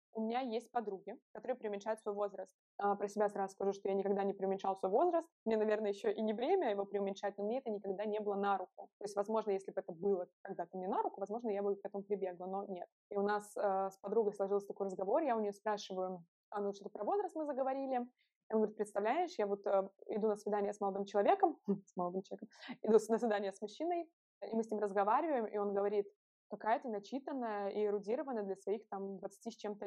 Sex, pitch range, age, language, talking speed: female, 195-225 Hz, 20-39, Russian, 225 wpm